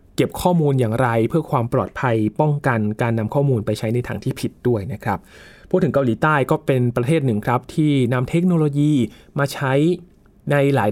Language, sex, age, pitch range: Thai, male, 20-39, 120-155 Hz